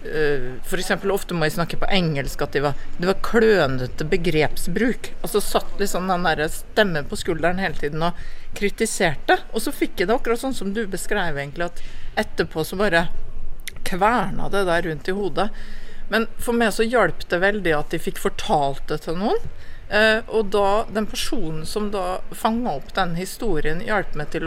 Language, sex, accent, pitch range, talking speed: English, female, Swedish, 165-215 Hz, 175 wpm